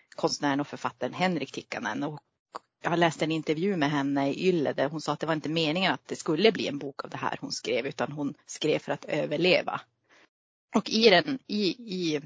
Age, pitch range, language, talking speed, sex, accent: 30-49, 150-185 Hz, Swedish, 205 wpm, female, native